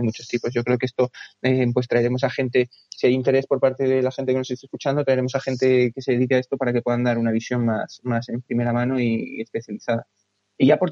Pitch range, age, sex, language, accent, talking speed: 120-135 Hz, 20-39, male, Spanish, Spanish, 260 wpm